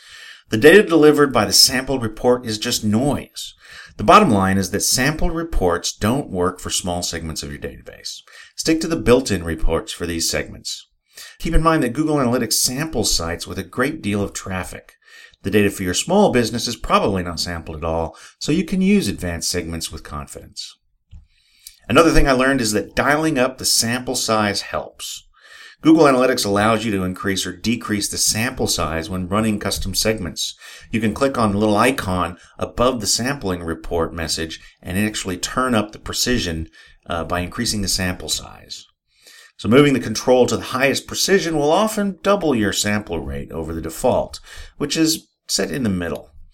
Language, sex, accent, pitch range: English, male, American, 85-125 Hz